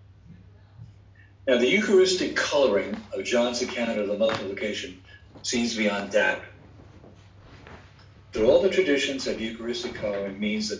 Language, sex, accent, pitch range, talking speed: English, male, American, 100-115 Hz, 120 wpm